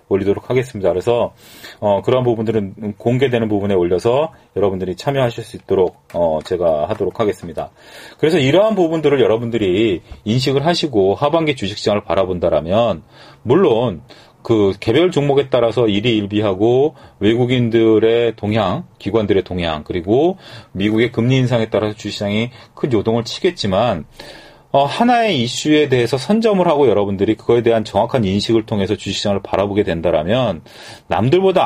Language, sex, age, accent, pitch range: Korean, male, 40-59, native, 100-130 Hz